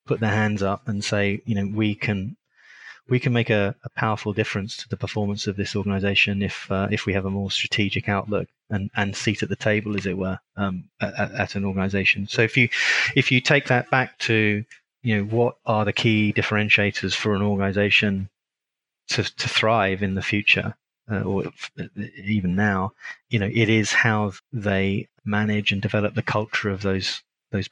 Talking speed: 195 wpm